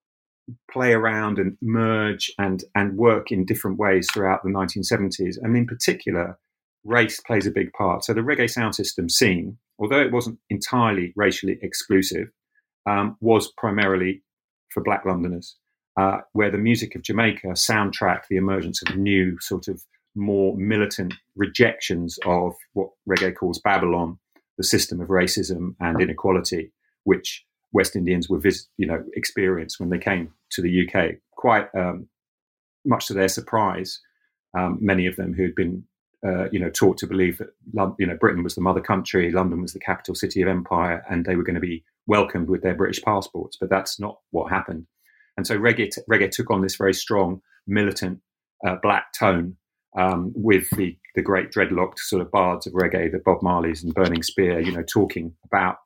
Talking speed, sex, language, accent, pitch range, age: 175 wpm, male, English, British, 90-105 Hz, 40-59